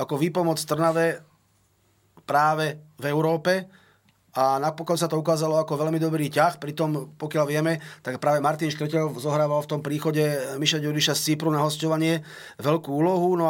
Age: 30-49